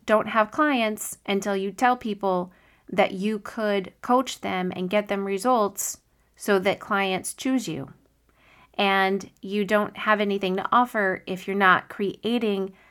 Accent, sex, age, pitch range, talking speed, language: American, female, 30-49, 185-225 Hz, 150 wpm, English